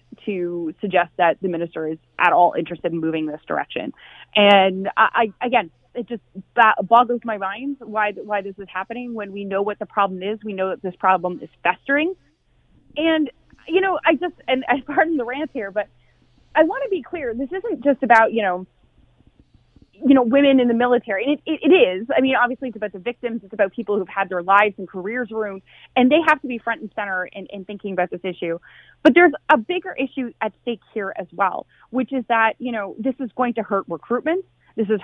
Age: 30-49